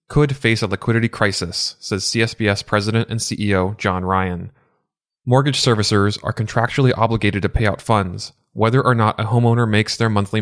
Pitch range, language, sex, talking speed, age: 100-125 Hz, English, male, 165 wpm, 20-39